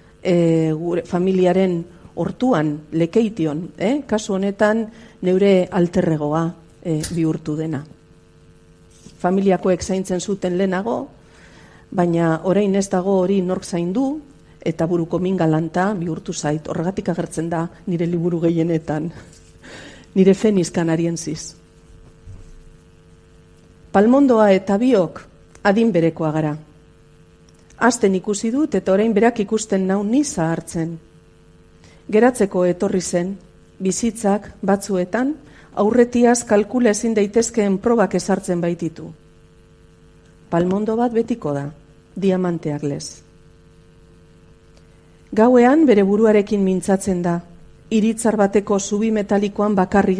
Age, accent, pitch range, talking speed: 40-59, Spanish, 170-210 Hz, 100 wpm